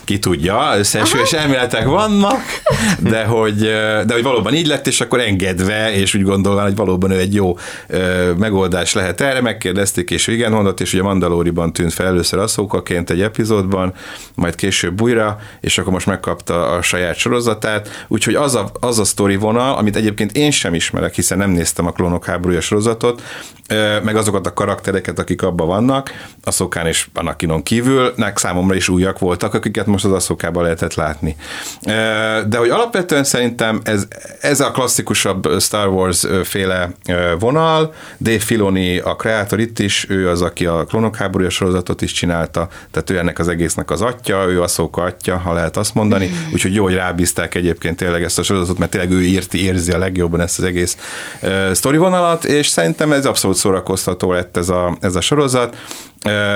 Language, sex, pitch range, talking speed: Hungarian, male, 90-110 Hz, 175 wpm